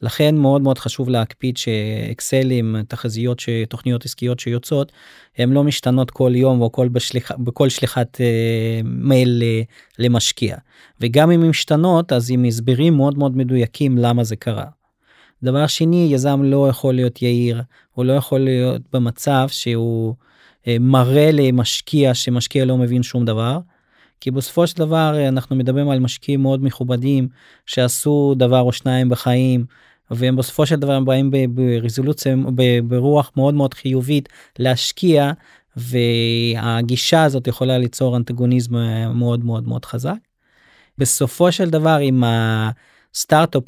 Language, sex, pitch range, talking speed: Hebrew, male, 120-135 Hz, 130 wpm